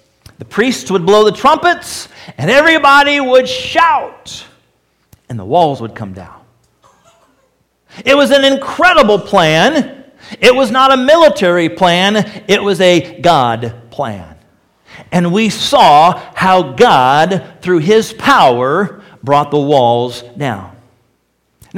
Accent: American